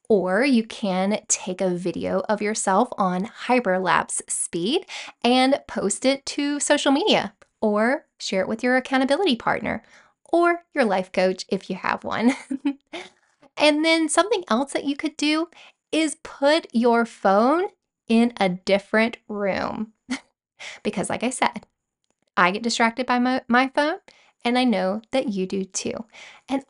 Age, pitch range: 10-29, 195-270 Hz